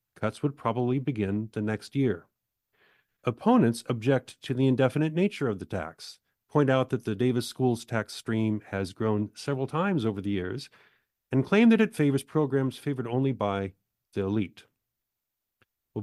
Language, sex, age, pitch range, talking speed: English, male, 40-59, 110-145 Hz, 155 wpm